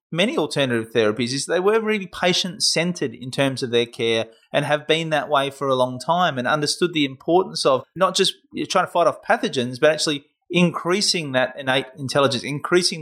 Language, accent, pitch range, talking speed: English, Australian, 130-160 Hz, 190 wpm